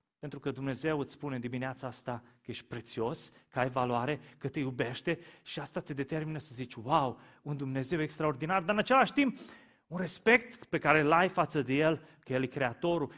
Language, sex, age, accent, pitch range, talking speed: Romanian, male, 30-49, native, 130-180 Hz, 195 wpm